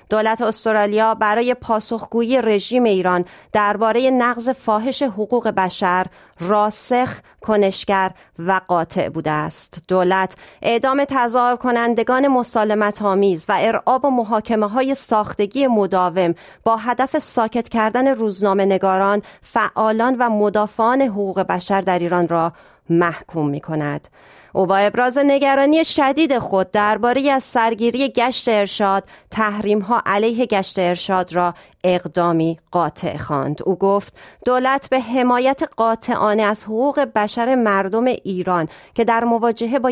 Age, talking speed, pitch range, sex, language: 30-49, 115 wpm, 185-235 Hz, female, Persian